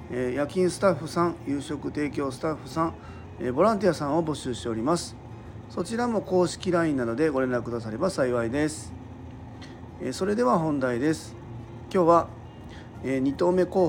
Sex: male